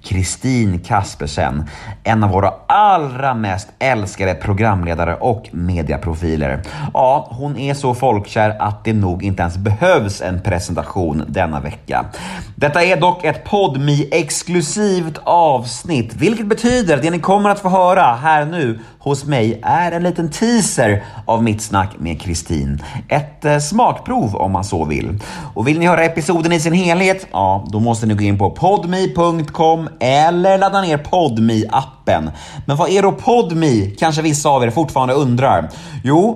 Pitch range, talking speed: 100-165 Hz, 150 wpm